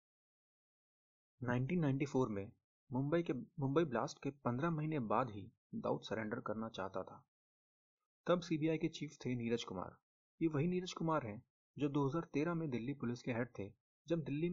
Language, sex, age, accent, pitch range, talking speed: Hindi, male, 30-49, native, 110-145 Hz, 155 wpm